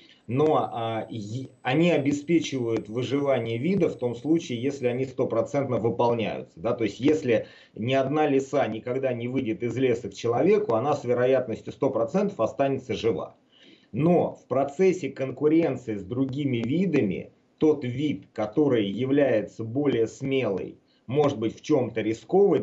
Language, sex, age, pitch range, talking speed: Russian, male, 30-49, 120-155 Hz, 140 wpm